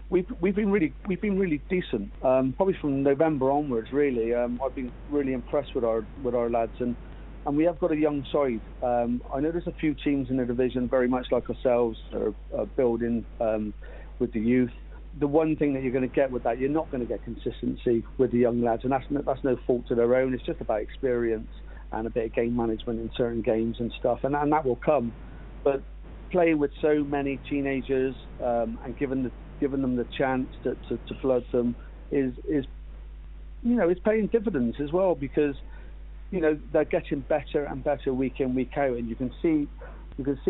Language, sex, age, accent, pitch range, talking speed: English, male, 40-59, British, 120-145 Hz, 220 wpm